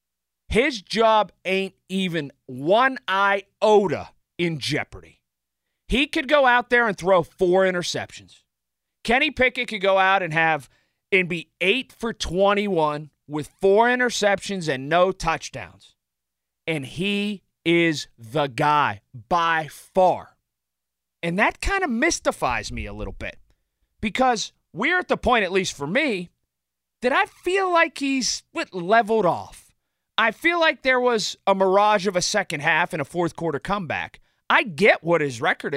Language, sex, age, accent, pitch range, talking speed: English, male, 40-59, American, 145-225 Hz, 150 wpm